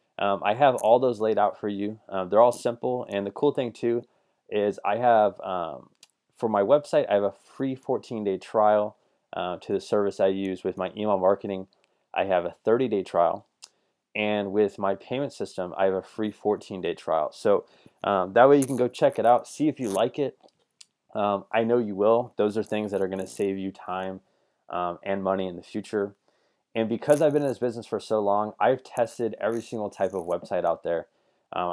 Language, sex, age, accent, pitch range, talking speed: English, male, 20-39, American, 95-120 Hz, 220 wpm